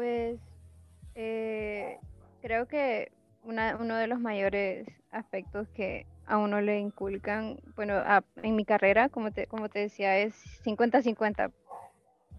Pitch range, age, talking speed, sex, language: 215-260 Hz, 10-29, 130 wpm, female, Spanish